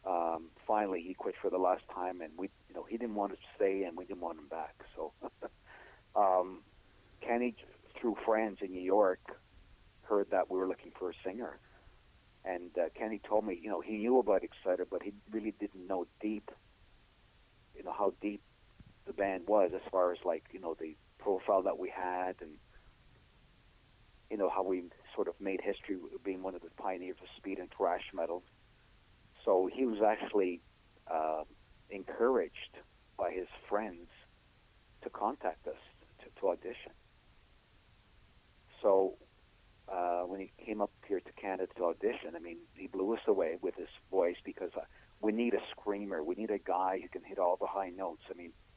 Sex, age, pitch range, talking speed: male, 50-69, 90-115 Hz, 180 wpm